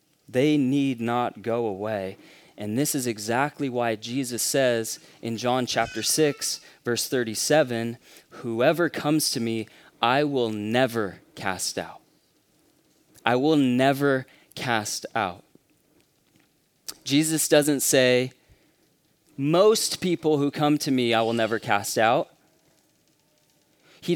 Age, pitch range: 20-39, 125-170 Hz